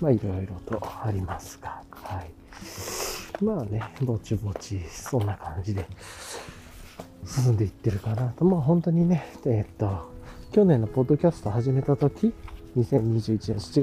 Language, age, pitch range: Japanese, 40-59, 100-125 Hz